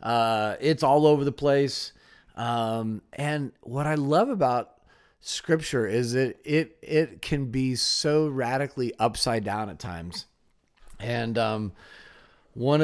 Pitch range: 115-145 Hz